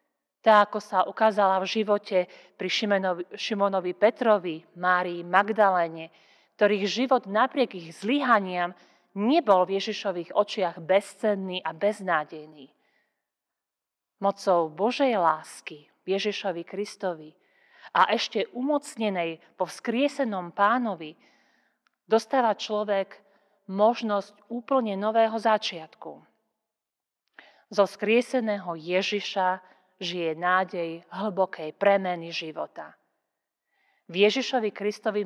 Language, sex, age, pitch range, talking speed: Slovak, female, 40-59, 175-215 Hz, 90 wpm